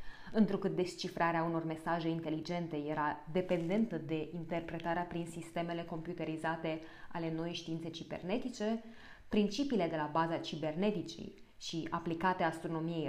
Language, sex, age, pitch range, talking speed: Romanian, female, 20-39, 160-195 Hz, 110 wpm